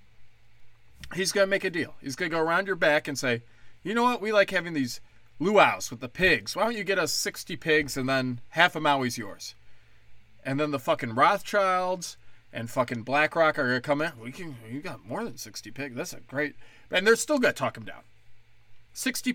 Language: English